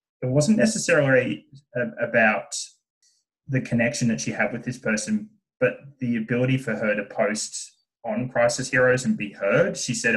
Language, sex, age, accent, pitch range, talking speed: English, male, 20-39, Australian, 100-135 Hz, 160 wpm